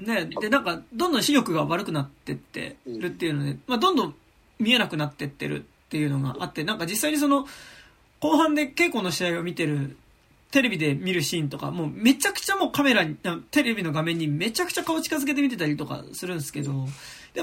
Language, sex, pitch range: Japanese, male, 160-265 Hz